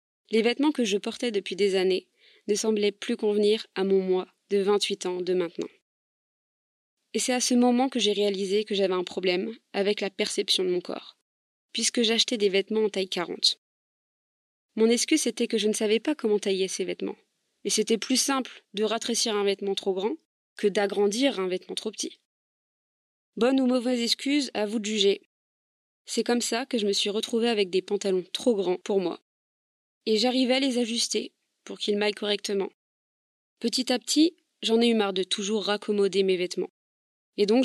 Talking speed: 190 wpm